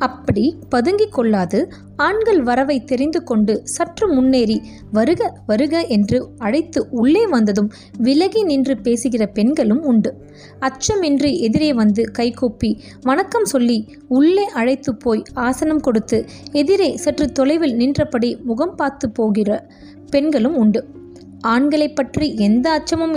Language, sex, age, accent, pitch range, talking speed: Tamil, female, 20-39, native, 225-300 Hz, 115 wpm